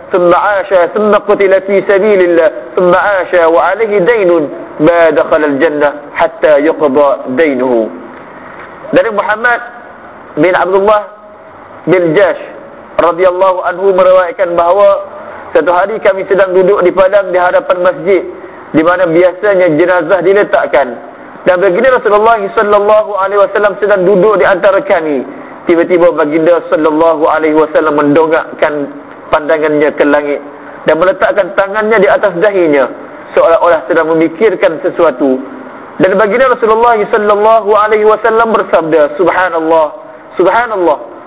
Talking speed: 110 wpm